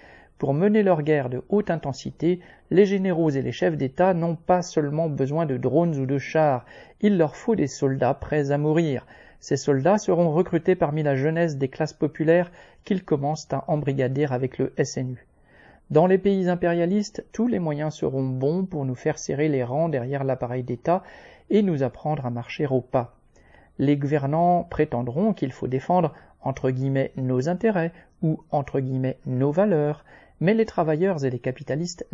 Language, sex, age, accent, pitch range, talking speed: French, male, 40-59, French, 135-170 Hz, 180 wpm